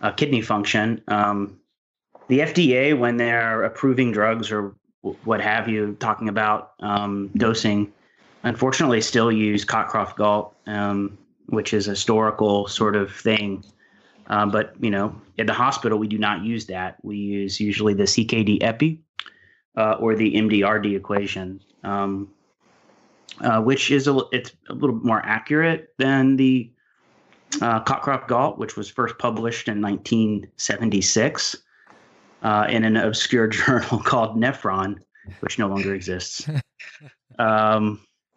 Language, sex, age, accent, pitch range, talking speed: English, male, 30-49, American, 105-120 Hz, 140 wpm